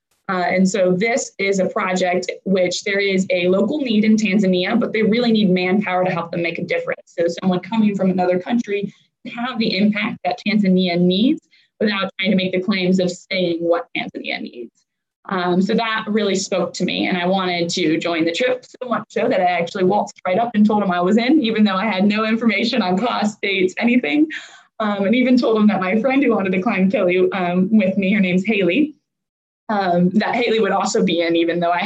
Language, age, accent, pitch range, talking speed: English, 20-39, American, 180-225 Hz, 220 wpm